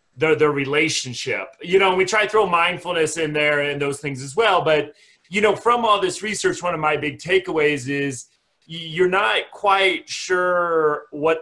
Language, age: English, 30-49